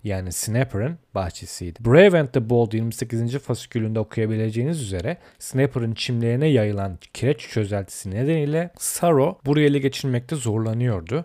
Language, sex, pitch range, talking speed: Turkish, male, 110-135 Hz, 115 wpm